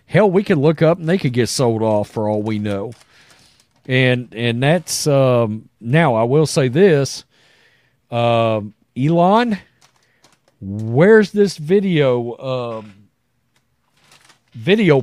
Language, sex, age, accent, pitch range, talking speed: English, male, 40-59, American, 120-165 Hz, 125 wpm